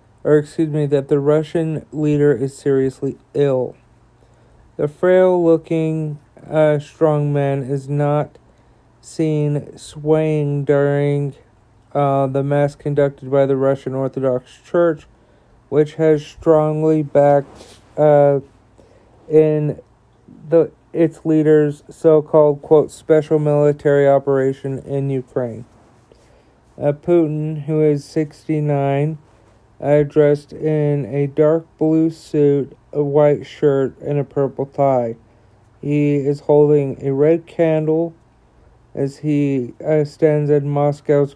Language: English